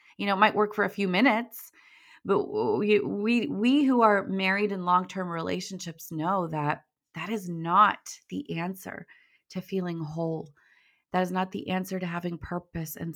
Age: 30-49